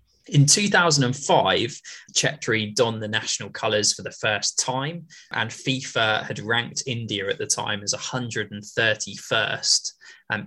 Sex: male